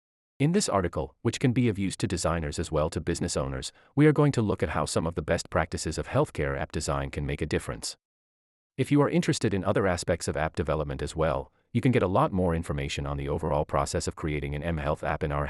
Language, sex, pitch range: English, male, 75-120 Hz